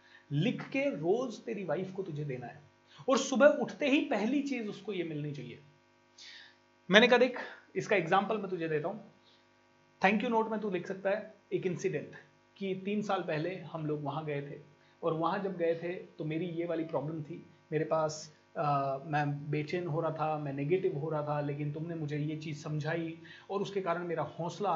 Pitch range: 155-205 Hz